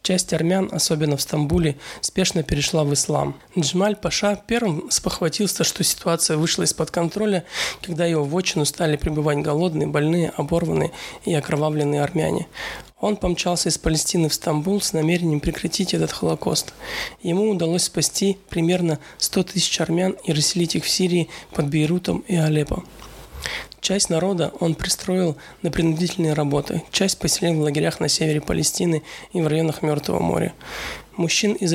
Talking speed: 145 wpm